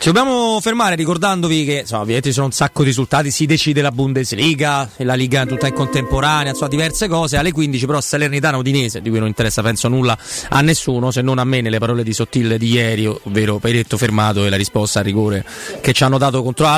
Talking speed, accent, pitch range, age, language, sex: 220 wpm, native, 125-160 Hz, 30-49, Italian, male